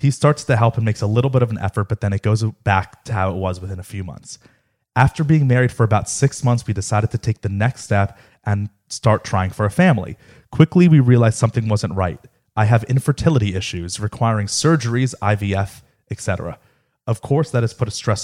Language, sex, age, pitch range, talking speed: English, male, 30-49, 100-125 Hz, 215 wpm